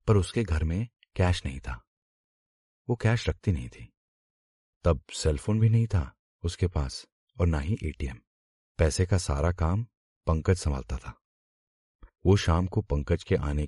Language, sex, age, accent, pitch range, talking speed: Hindi, male, 40-59, native, 75-100 Hz, 160 wpm